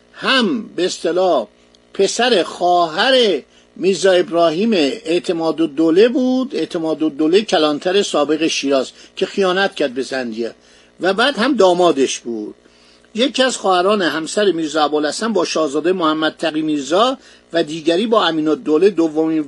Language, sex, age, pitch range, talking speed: Persian, male, 50-69, 155-210 Hz, 125 wpm